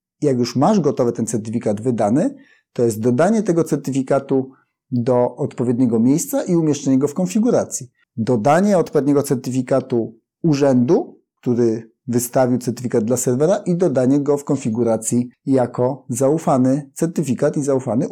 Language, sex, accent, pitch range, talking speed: Polish, male, native, 120-160 Hz, 130 wpm